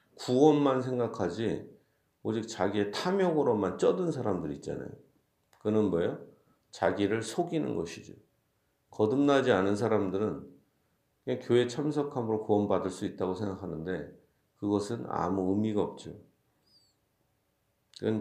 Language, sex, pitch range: Korean, male, 95-125 Hz